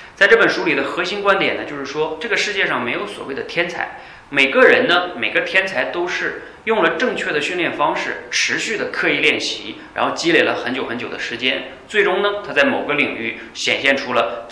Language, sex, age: Chinese, male, 30-49